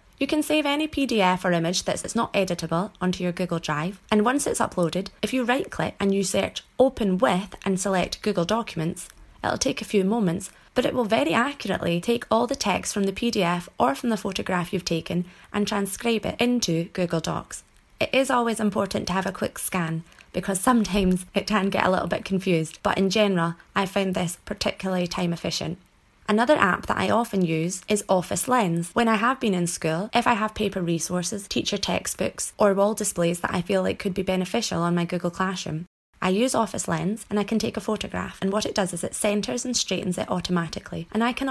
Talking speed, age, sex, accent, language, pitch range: 210 wpm, 20-39, female, British, English, 180-220 Hz